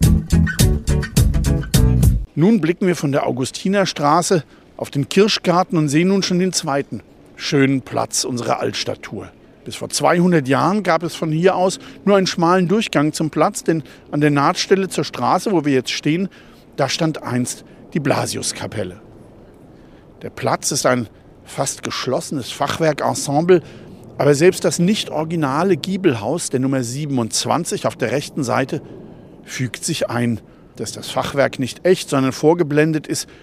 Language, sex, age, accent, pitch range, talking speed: German, male, 50-69, German, 120-165 Hz, 145 wpm